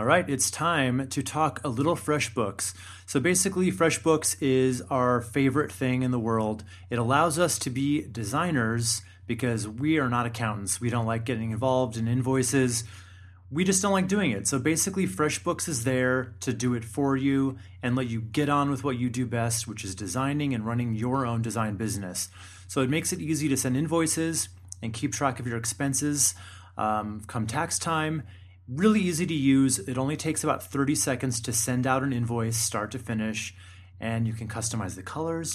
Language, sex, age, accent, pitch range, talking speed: English, male, 30-49, American, 110-145 Hz, 190 wpm